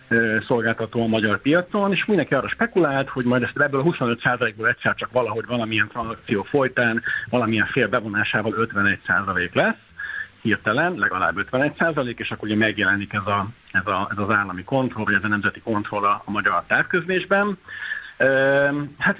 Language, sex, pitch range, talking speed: Hungarian, male, 110-130 Hz, 155 wpm